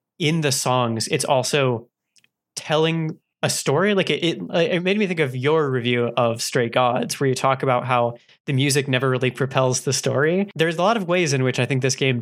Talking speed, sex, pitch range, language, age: 215 wpm, male, 125-155 Hz, English, 20-39